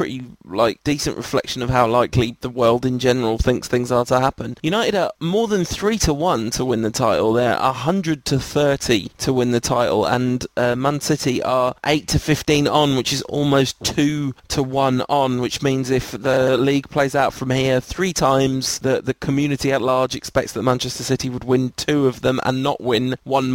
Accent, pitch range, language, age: British, 125-150 Hz, English, 20-39